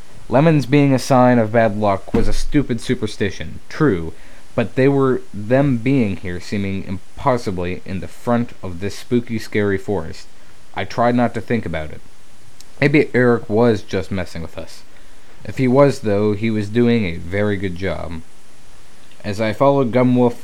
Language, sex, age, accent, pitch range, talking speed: English, male, 20-39, American, 95-120 Hz, 165 wpm